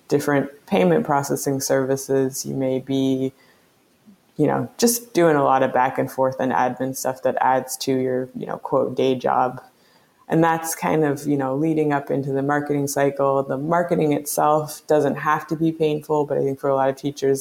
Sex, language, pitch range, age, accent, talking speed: female, English, 135-155 Hz, 20-39, American, 195 wpm